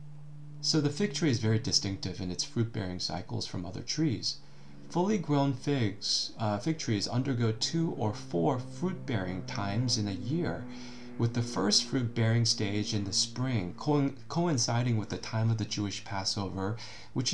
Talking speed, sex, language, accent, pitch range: 160 wpm, male, English, American, 100-135 Hz